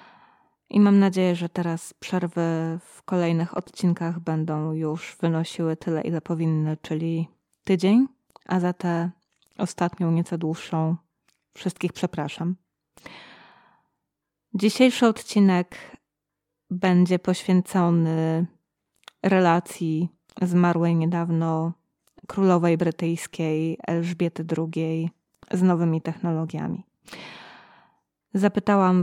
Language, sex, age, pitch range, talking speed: Polish, female, 20-39, 165-185 Hz, 85 wpm